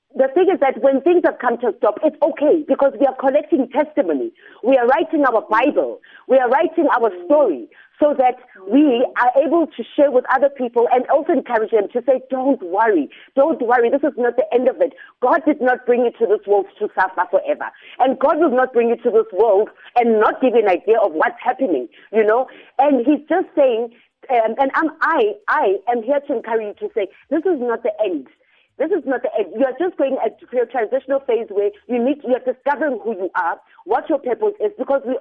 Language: English